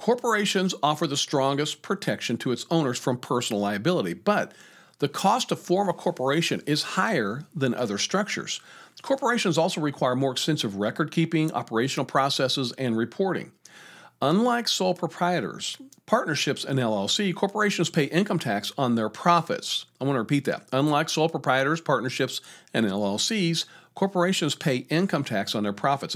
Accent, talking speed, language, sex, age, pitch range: American, 145 wpm, English, male, 50-69, 120-170 Hz